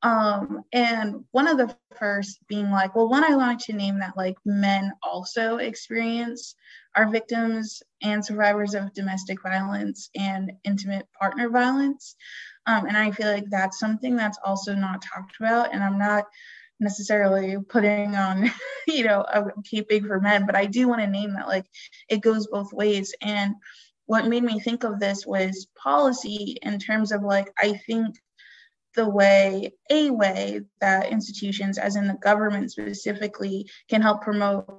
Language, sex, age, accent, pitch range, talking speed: English, female, 20-39, American, 200-230 Hz, 165 wpm